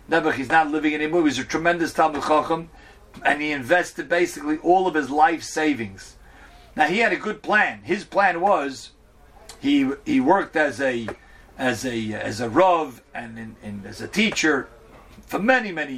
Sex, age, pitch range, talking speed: male, 50-69, 135-180 Hz, 180 wpm